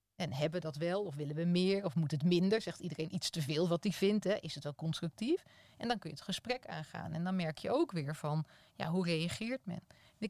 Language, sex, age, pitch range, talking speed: Dutch, female, 30-49, 160-195 Hz, 255 wpm